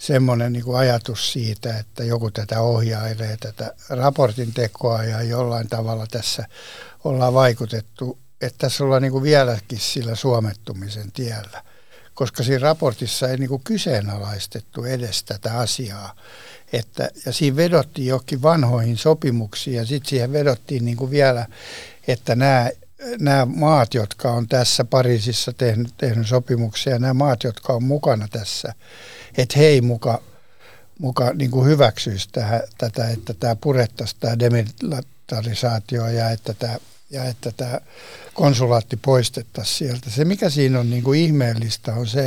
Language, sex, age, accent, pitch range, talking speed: Finnish, male, 60-79, native, 115-135 Hz, 125 wpm